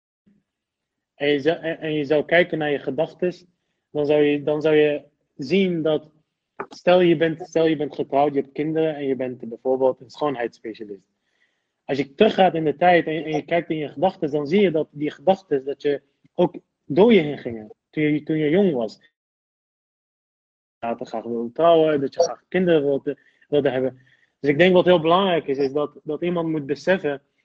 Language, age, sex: Dutch, 30-49, male